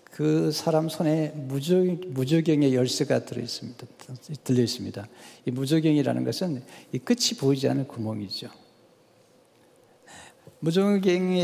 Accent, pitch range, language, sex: native, 130-180 Hz, Korean, male